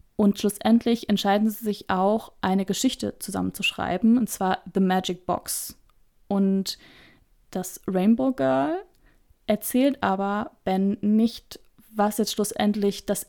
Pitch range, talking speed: 205-235 Hz, 115 wpm